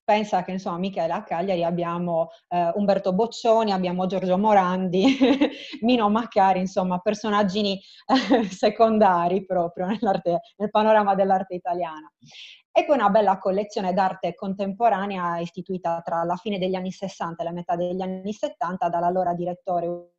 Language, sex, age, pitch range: Italian, female, 20-39, 175-210 Hz